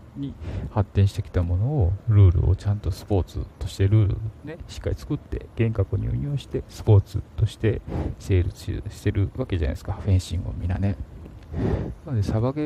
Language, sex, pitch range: Japanese, male, 90-110 Hz